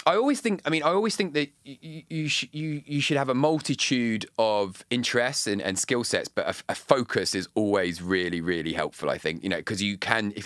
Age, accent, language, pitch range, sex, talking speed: 30-49, British, English, 85-110 Hz, male, 245 wpm